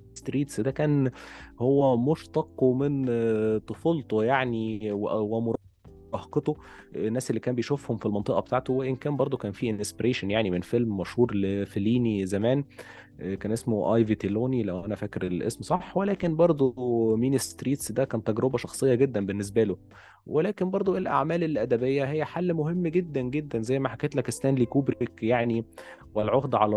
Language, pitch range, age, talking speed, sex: Arabic, 105-135 Hz, 20-39, 145 wpm, male